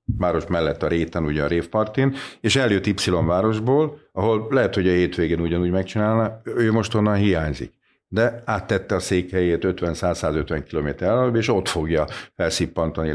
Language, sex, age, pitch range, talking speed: Hungarian, male, 50-69, 80-100 Hz, 150 wpm